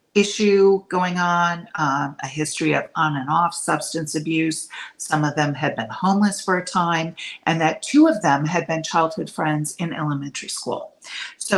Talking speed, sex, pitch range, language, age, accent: 175 wpm, female, 150-185 Hz, English, 40-59, American